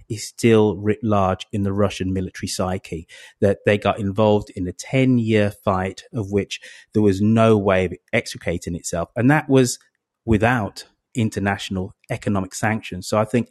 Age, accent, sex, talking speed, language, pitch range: 30-49, British, male, 160 wpm, English, 95-120 Hz